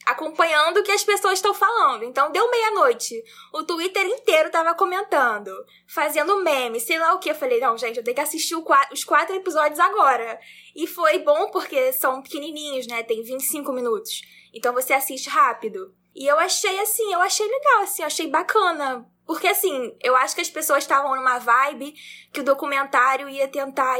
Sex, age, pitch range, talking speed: female, 10-29, 260-365 Hz, 185 wpm